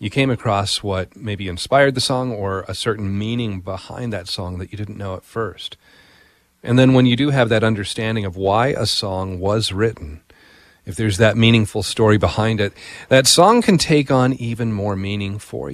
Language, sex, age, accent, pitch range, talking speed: English, male, 40-59, American, 95-115 Hz, 195 wpm